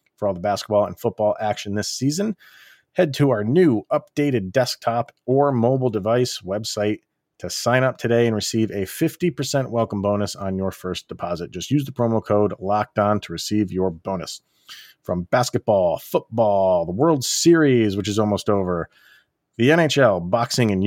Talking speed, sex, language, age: 165 wpm, male, English, 30-49